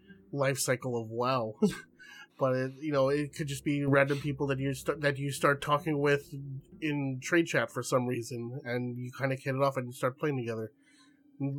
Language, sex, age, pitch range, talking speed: English, male, 30-49, 125-155 Hz, 205 wpm